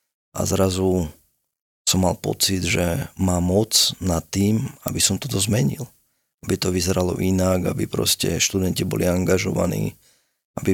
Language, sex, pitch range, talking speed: Slovak, male, 90-100 Hz, 135 wpm